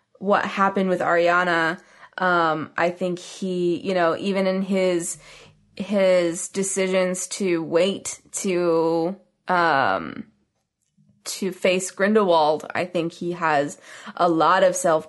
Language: English